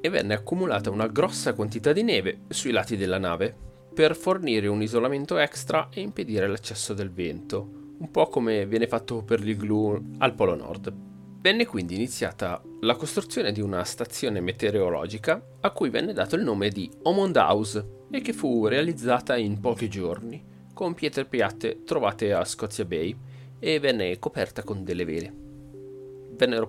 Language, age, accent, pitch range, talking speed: Italian, 30-49, native, 100-130 Hz, 160 wpm